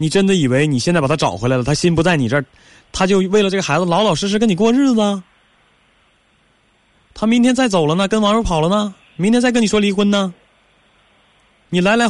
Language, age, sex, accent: Chinese, 20-39, male, native